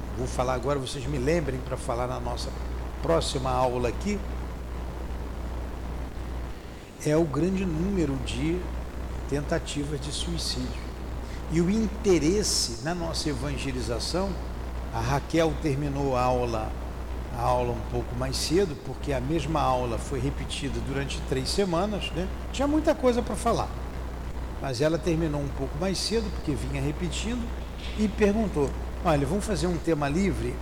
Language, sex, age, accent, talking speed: Portuguese, male, 60-79, Brazilian, 135 wpm